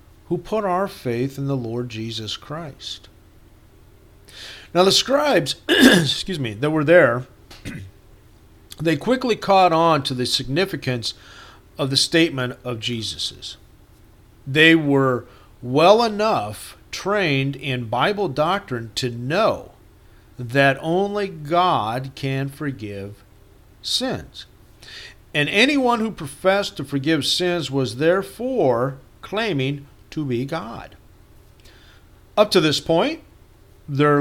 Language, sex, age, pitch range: English, male, 50-69, 105-160 Hz